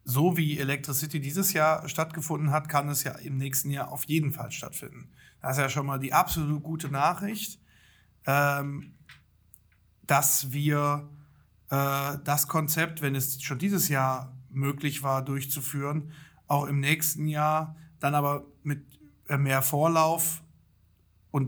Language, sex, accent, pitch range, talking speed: German, male, German, 135-155 Hz, 135 wpm